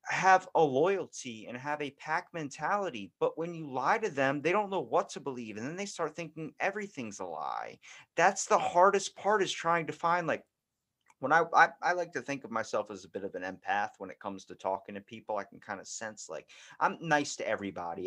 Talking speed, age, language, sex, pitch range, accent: 230 wpm, 30-49, English, male, 110-160 Hz, American